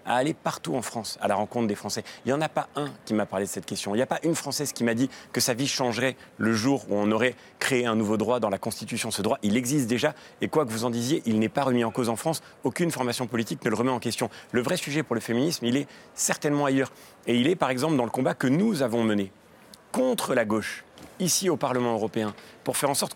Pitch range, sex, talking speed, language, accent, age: 115-150 Hz, male, 275 wpm, French, French, 30-49